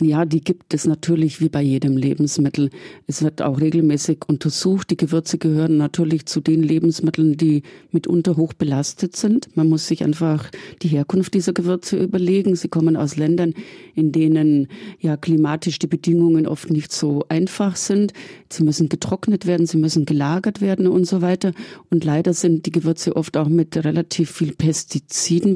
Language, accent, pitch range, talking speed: German, German, 155-175 Hz, 170 wpm